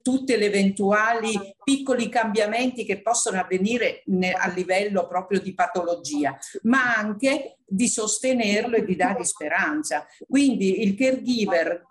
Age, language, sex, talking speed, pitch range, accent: 50-69, Italian, female, 125 wpm, 195-255 Hz, native